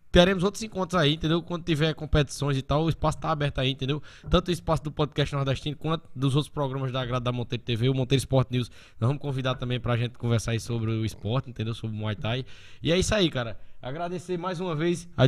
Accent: Brazilian